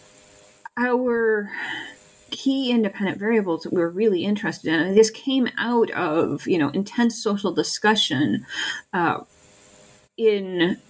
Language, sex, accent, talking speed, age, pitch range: English, female, American, 120 wpm, 30-49, 150-240 Hz